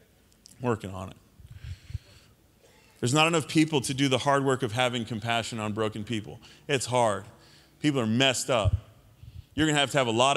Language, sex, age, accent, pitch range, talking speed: English, male, 30-49, American, 120-160 Hz, 180 wpm